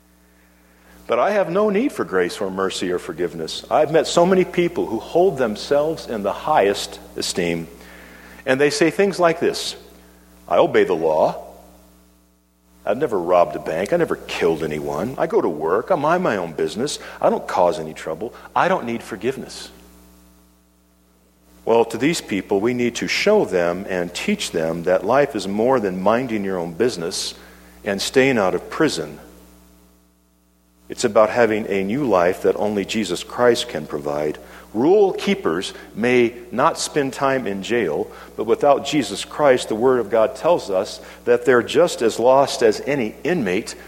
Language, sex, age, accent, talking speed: English, male, 50-69, American, 170 wpm